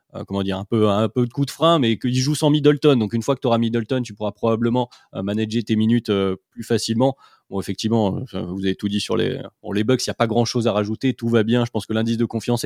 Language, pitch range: French, 110-135 Hz